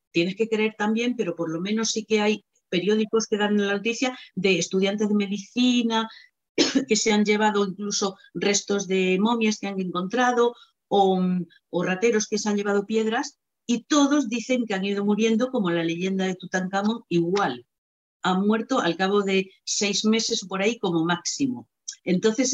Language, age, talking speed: Spanish, 50-69, 170 wpm